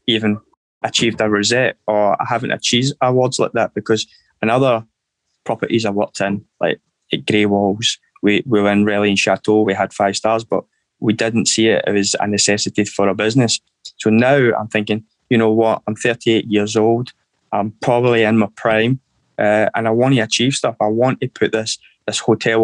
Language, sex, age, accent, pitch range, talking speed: English, male, 20-39, British, 105-120 Hz, 200 wpm